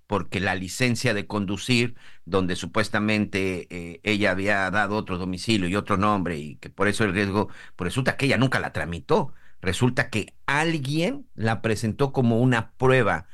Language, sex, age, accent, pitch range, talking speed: Spanish, male, 50-69, Mexican, 95-125 Hz, 160 wpm